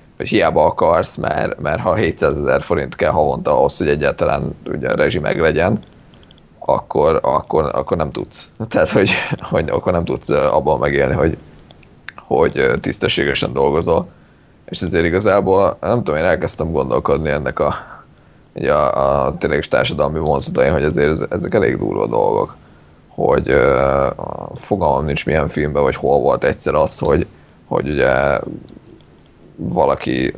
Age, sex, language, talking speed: 20-39, male, Hungarian, 130 wpm